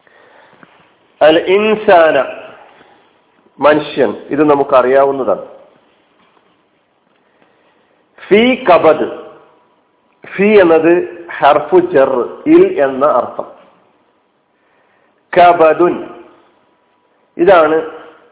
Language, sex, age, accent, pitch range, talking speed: Malayalam, male, 50-69, native, 140-215 Hz, 50 wpm